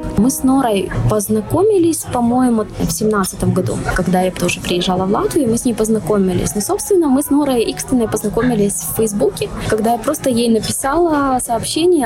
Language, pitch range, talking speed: Russian, 180-220 Hz, 170 wpm